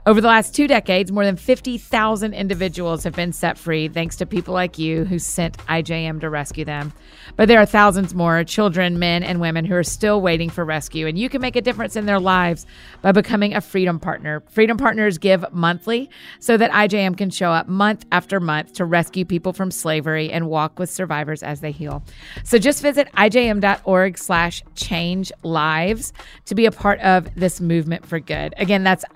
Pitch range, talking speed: 165-205 Hz, 200 wpm